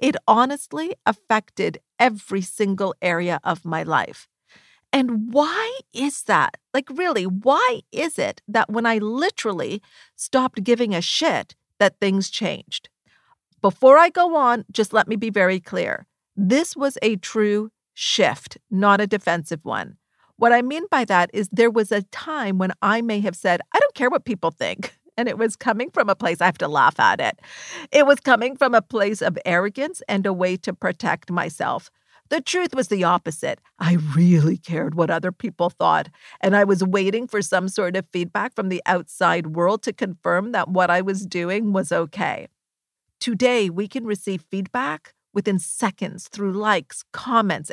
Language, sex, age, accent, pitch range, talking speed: English, female, 50-69, American, 185-245 Hz, 175 wpm